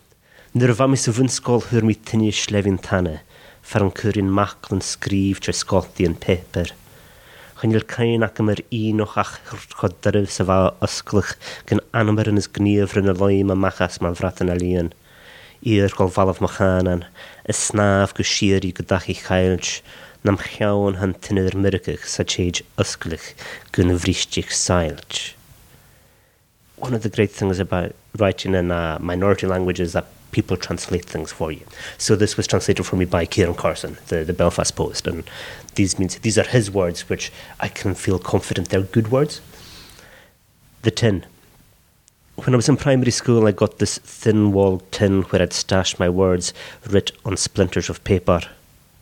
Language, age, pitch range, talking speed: English, 30-49, 90-110 Hz, 145 wpm